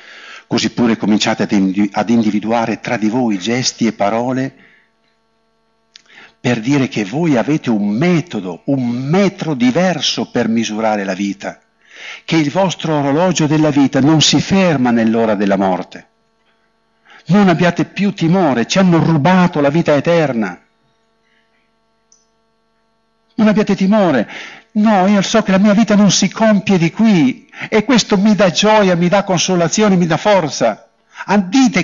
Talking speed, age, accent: 140 wpm, 50-69, native